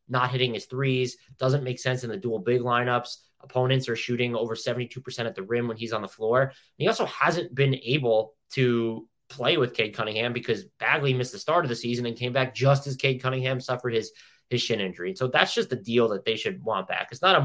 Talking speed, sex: 235 wpm, male